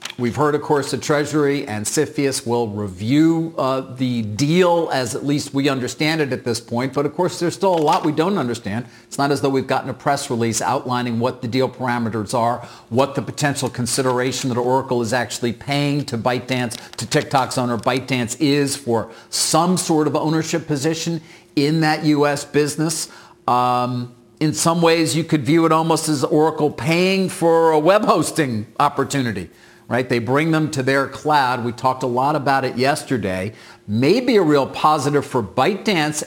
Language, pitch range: English, 125-155 Hz